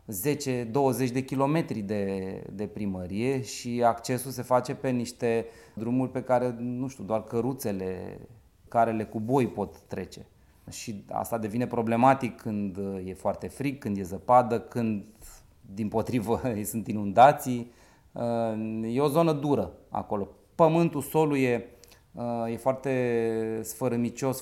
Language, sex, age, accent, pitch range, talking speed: Romanian, male, 30-49, native, 110-130 Hz, 130 wpm